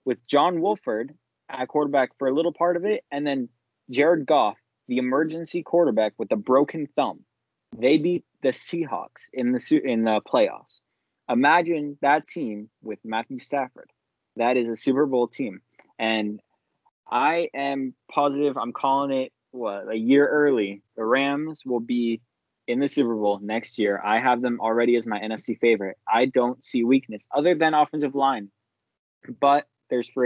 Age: 20-39